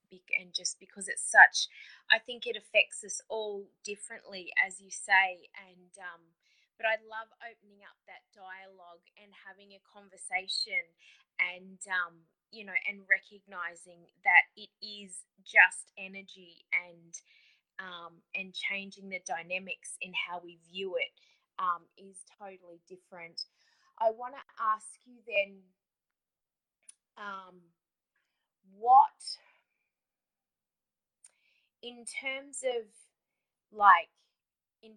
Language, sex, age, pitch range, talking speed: English, female, 20-39, 185-225 Hz, 115 wpm